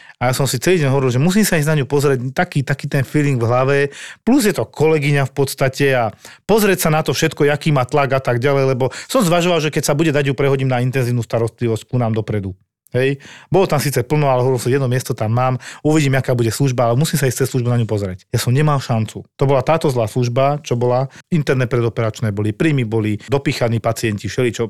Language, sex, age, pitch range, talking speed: Slovak, male, 40-59, 120-150 Hz, 240 wpm